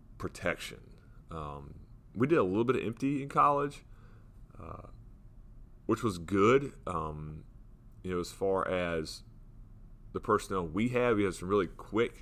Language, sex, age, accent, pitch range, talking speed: English, male, 30-49, American, 85-115 Hz, 145 wpm